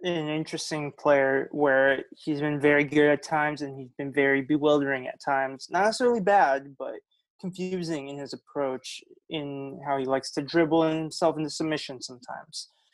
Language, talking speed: English, 160 wpm